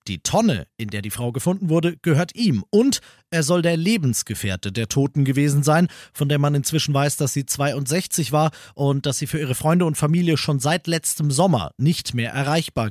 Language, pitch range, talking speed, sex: German, 100-155 Hz, 200 wpm, male